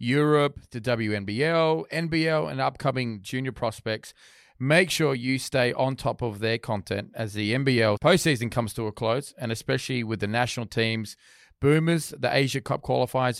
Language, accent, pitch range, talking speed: English, Australian, 110-140 Hz, 160 wpm